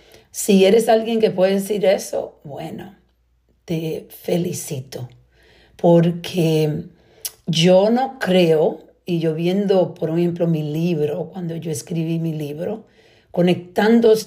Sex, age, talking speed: female, 50-69, 115 wpm